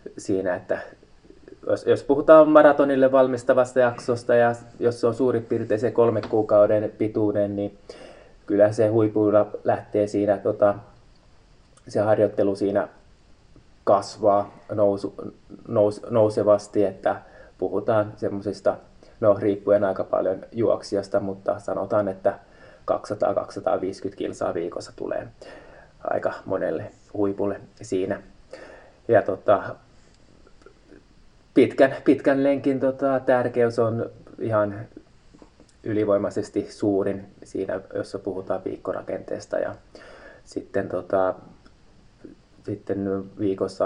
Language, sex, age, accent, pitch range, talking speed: Finnish, male, 20-39, native, 100-120 Hz, 95 wpm